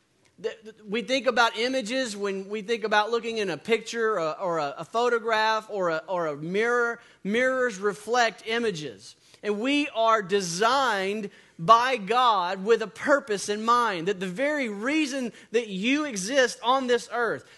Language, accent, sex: English, American, male